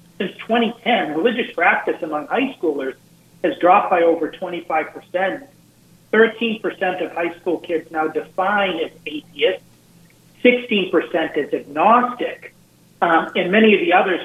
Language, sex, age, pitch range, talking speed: English, male, 40-59, 160-195 Hz, 125 wpm